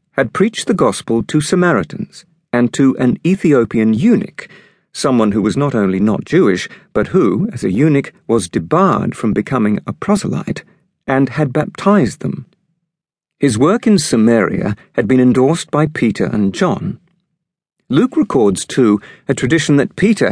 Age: 50-69